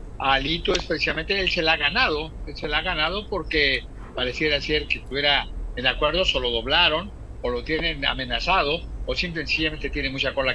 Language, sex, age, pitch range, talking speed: Spanish, male, 50-69, 130-160 Hz, 170 wpm